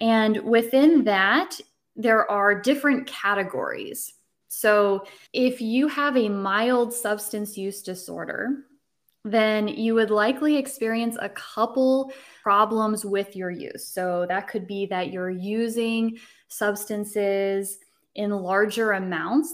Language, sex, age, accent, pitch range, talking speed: English, female, 20-39, American, 190-230 Hz, 115 wpm